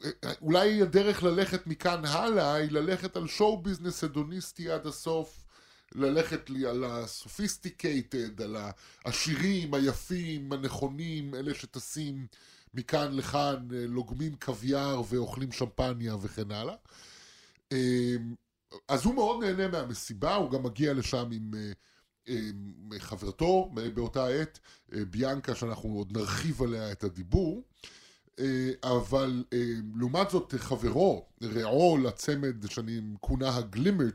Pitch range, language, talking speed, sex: 115-145 Hz, Hebrew, 105 wpm, female